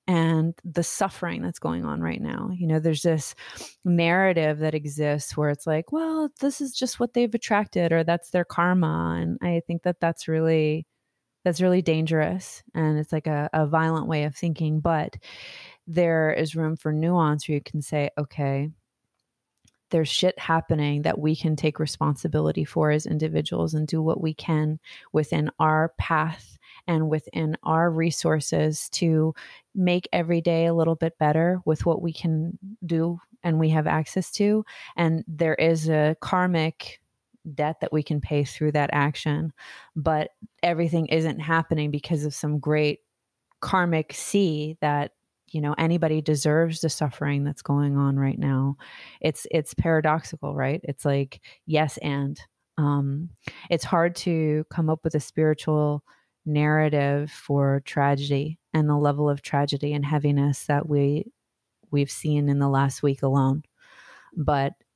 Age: 30-49